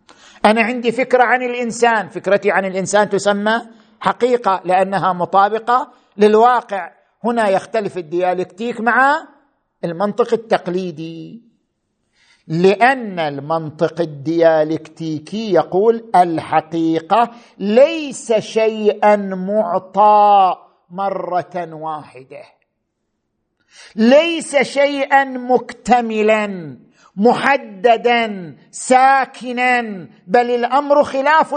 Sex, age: male, 50-69